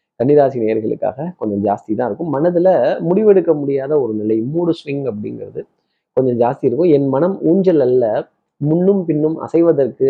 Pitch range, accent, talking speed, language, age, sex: 130-175 Hz, native, 145 wpm, Tamil, 30-49, male